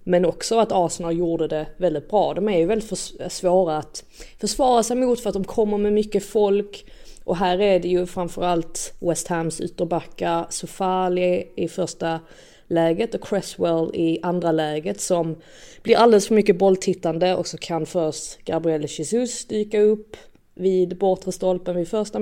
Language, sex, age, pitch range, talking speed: Swedish, female, 30-49, 170-210 Hz, 165 wpm